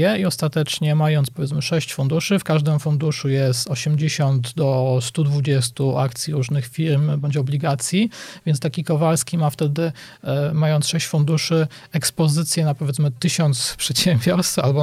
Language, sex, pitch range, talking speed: Polish, male, 135-165 Hz, 130 wpm